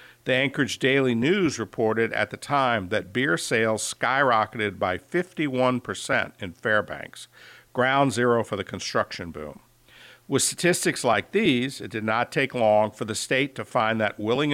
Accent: American